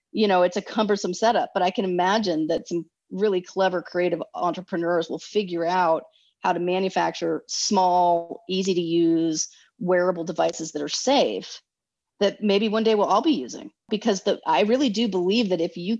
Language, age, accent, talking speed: English, 30-49, American, 175 wpm